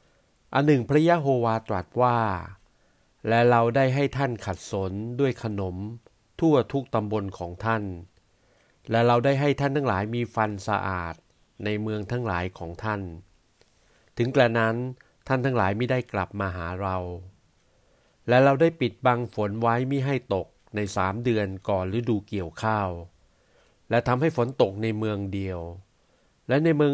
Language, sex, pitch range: Thai, male, 100-125 Hz